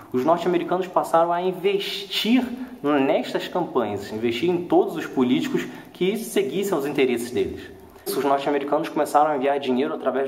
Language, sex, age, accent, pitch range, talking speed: English, male, 20-39, Brazilian, 130-200 Hz, 140 wpm